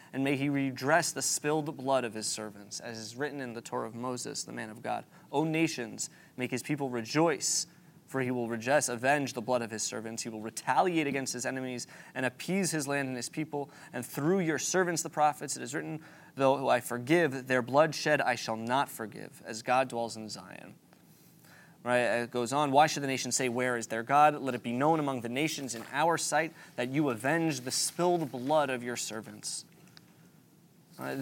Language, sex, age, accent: English, male, 20-39, American